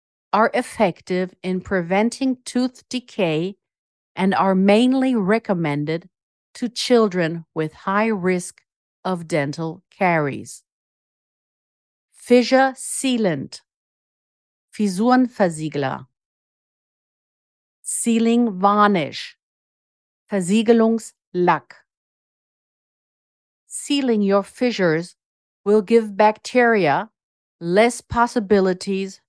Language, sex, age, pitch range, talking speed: German, female, 50-69, 175-225 Hz, 65 wpm